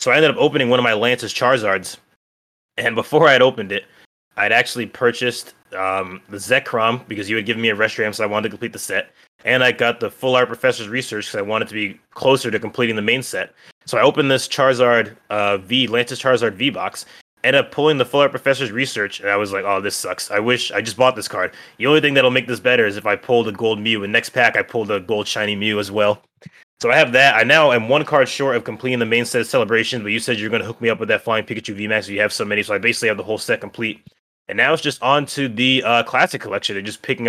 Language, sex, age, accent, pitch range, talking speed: English, male, 20-39, American, 105-125 Hz, 275 wpm